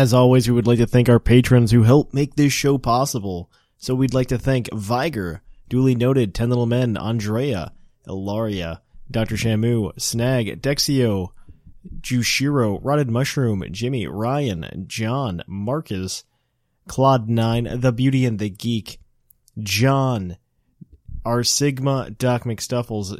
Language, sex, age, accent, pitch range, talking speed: English, male, 20-39, American, 105-135 Hz, 130 wpm